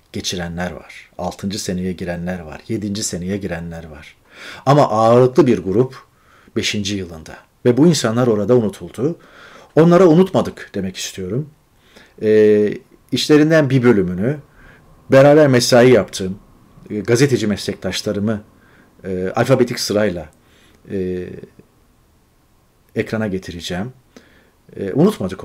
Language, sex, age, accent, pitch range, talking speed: Turkish, male, 40-59, native, 95-125 Hz, 100 wpm